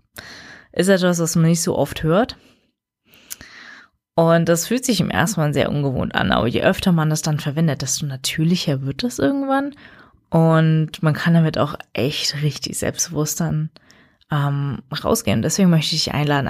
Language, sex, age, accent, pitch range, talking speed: German, female, 20-39, German, 140-170 Hz, 170 wpm